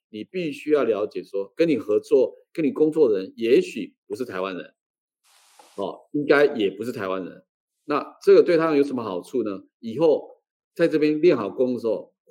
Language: Chinese